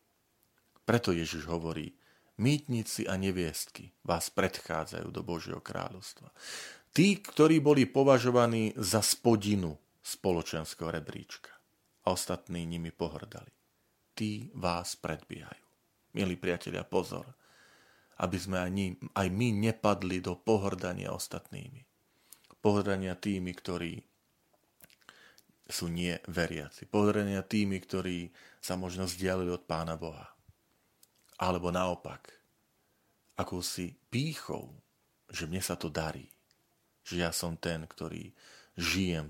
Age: 40-59